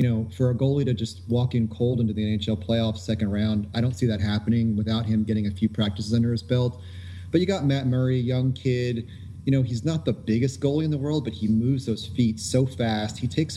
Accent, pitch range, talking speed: American, 115-140 Hz, 250 wpm